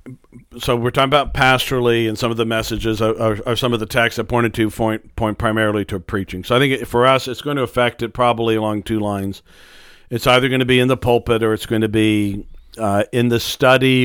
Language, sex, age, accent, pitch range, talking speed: English, male, 50-69, American, 110-120 Hz, 240 wpm